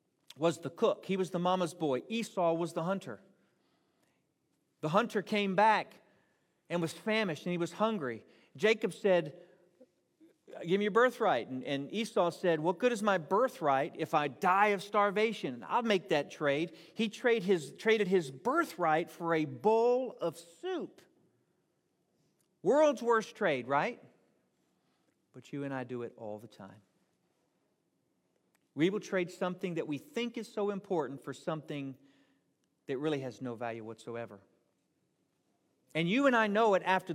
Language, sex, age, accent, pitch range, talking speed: English, male, 40-59, American, 145-210 Hz, 150 wpm